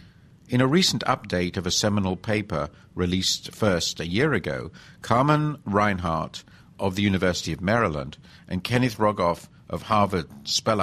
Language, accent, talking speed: English, British, 145 wpm